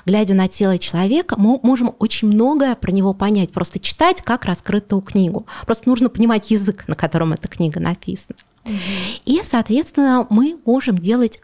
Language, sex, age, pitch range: Russian, female, 20-39, 185-240 Hz